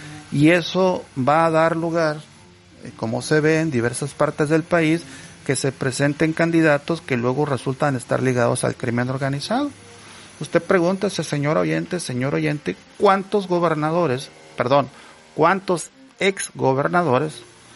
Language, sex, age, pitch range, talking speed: Spanish, male, 40-59, 125-165 Hz, 125 wpm